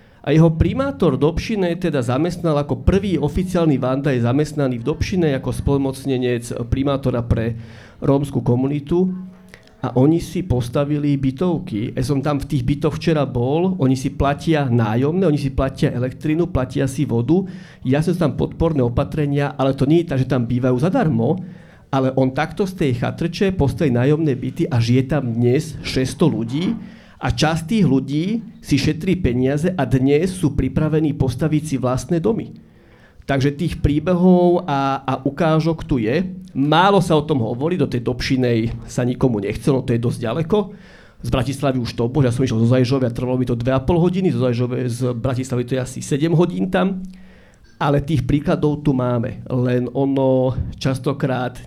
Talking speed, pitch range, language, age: 165 wpm, 125-160 Hz, Slovak, 40-59